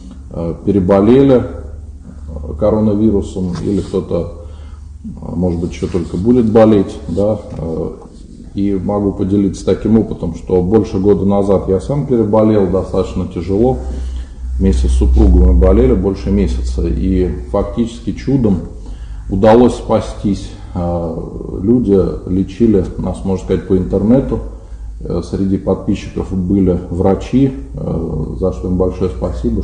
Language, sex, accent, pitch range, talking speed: Russian, male, native, 85-100 Hz, 105 wpm